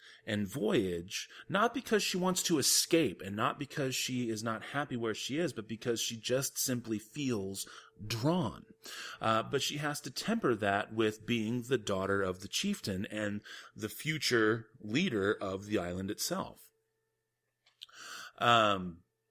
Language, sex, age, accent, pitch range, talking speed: English, male, 30-49, American, 100-130 Hz, 150 wpm